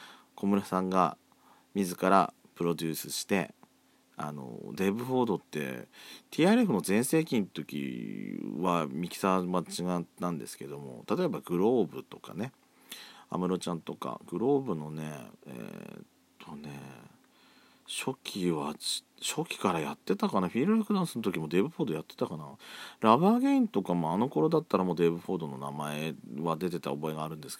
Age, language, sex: 40-59, Japanese, male